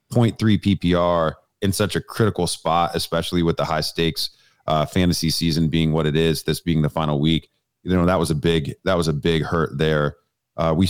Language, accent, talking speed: English, American, 210 wpm